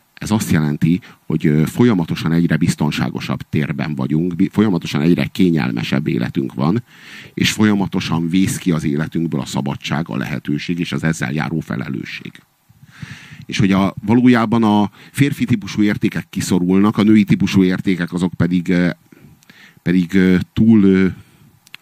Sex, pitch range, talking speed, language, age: male, 85-110 Hz, 125 wpm, Hungarian, 50-69